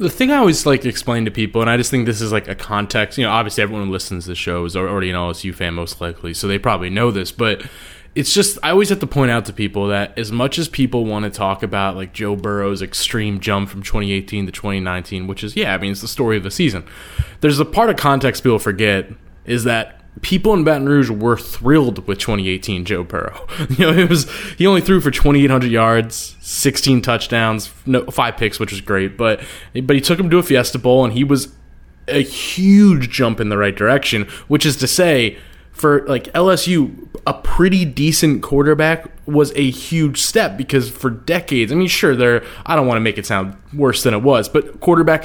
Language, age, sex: English, 20-39, male